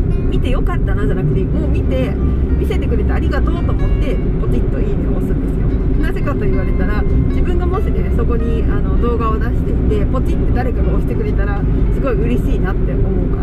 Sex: female